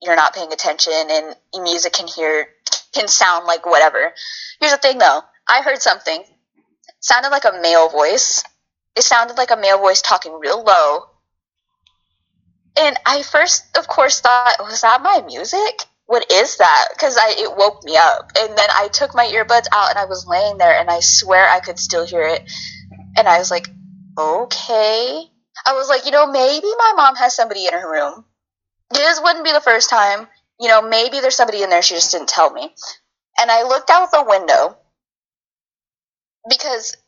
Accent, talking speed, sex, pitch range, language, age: American, 190 wpm, female, 180-275 Hz, English, 10-29